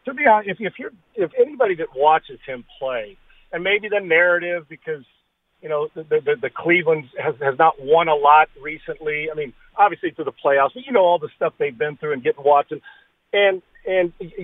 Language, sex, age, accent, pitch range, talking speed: English, male, 50-69, American, 170-230 Hz, 210 wpm